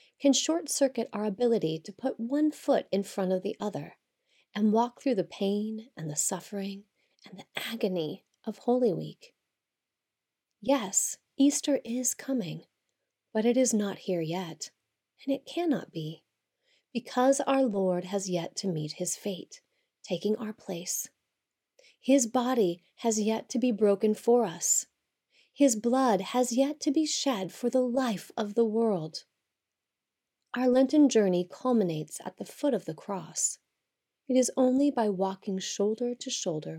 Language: English